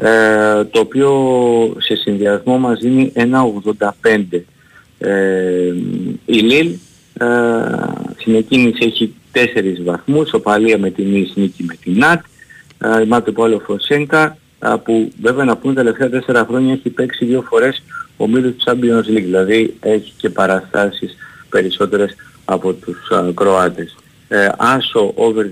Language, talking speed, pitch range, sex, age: Greek, 140 wpm, 100-125 Hz, male, 50-69